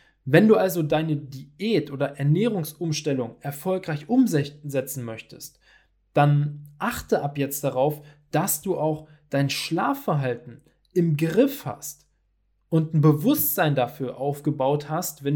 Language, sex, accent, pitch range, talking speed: German, male, German, 145-175 Hz, 115 wpm